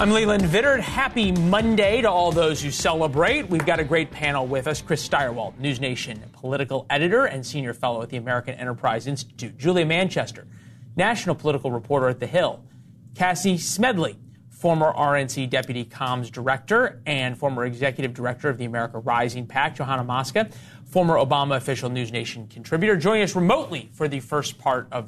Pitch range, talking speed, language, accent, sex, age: 125-165 Hz, 170 wpm, English, American, male, 30-49